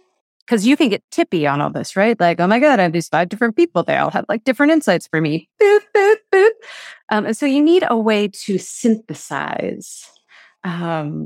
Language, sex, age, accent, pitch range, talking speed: English, female, 30-49, American, 185-250 Hz, 195 wpm